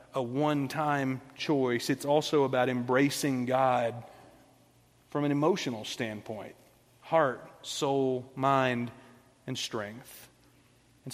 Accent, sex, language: American, male, English